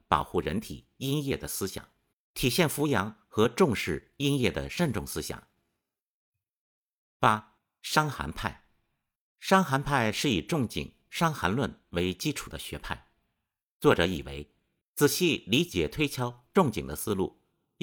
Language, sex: Chinese, male